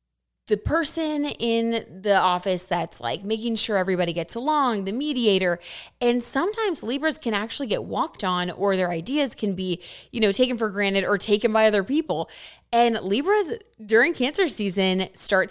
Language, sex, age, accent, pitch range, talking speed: English, female, 20-39, American, 180-240 Hz, 165 wpm